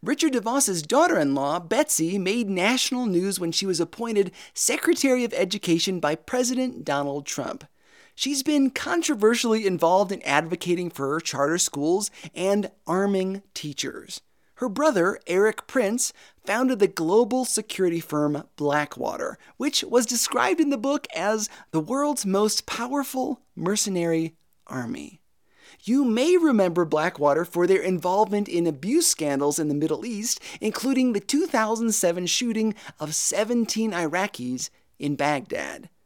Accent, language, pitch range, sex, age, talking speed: American, English, 165-250 Hz, male, 30-49, 130 wpm